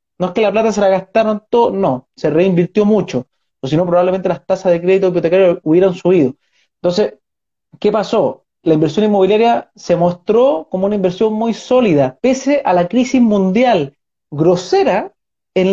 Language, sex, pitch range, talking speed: Spanish, male, 175-230 Hz, 170 wpm